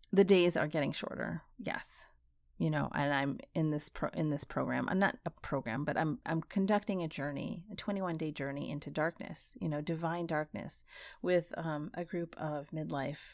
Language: English